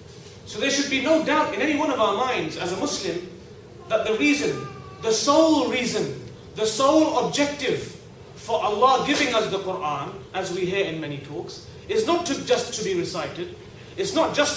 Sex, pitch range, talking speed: male, 180-260 Hz, 190 wpm